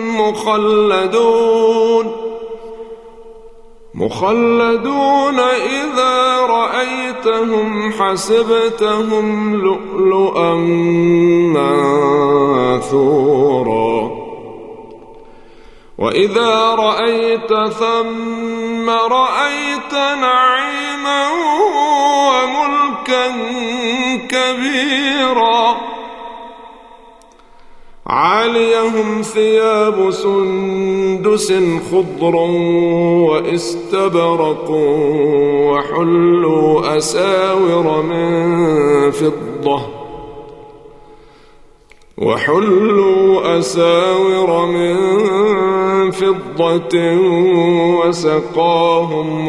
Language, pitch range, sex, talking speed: Arabic, 170-230 Hz, male, 35 wpm